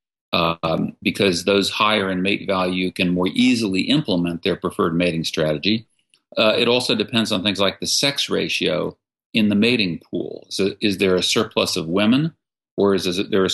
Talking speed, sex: 180 wpm, male